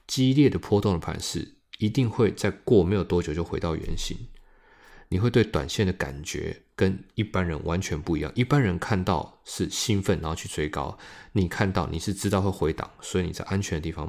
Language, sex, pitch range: Chinese, male, 85-105 Hz